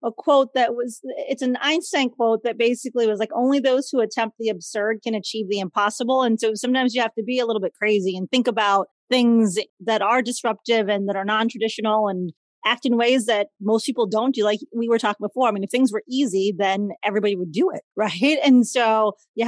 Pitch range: 215-255 Hz